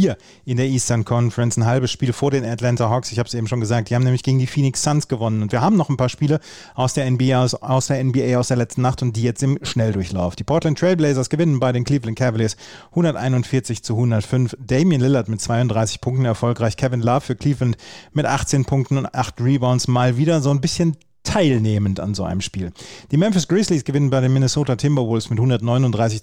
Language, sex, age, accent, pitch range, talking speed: German, male, 30-49, German, 115-135 Hz, 215 wpm